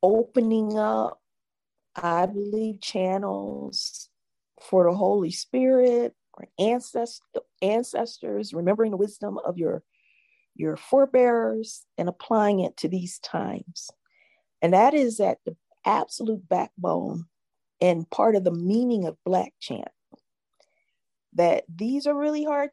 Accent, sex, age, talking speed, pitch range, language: American, female, 40-59, 120 wpm, 175-235 Hz, English